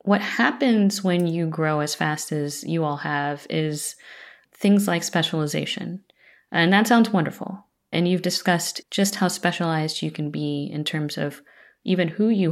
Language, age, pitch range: English, 30-49, 150-185 Hz